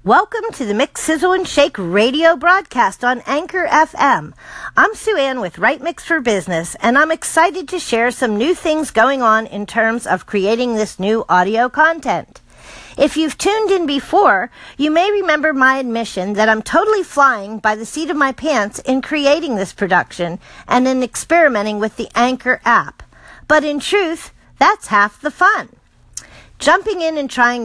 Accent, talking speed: American, 175 wpm